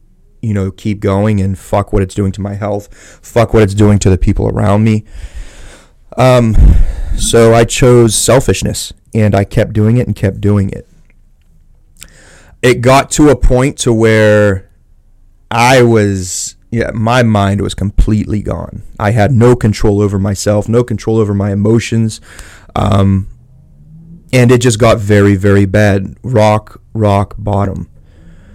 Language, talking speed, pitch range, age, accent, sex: English, 150 wpm, 95-110 Hz, 30-49, American, male